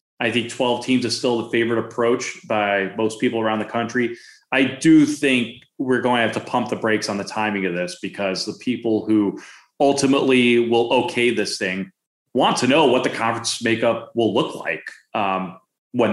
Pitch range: 105-130 Hz